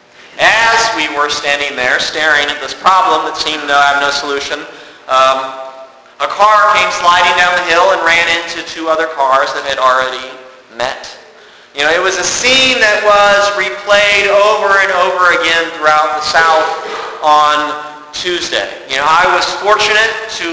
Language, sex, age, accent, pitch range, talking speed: English, male, 40-59, American, 155-205 Hz, 165 wpm